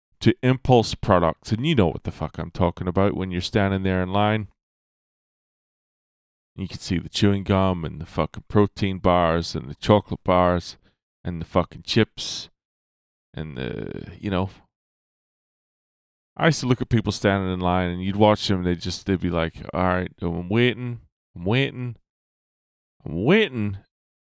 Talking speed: 165 wpm